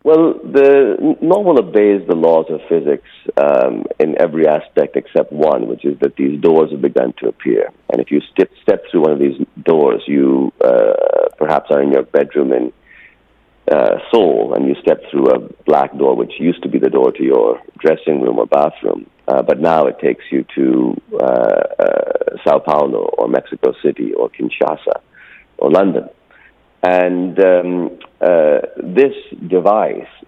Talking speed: 170 wpm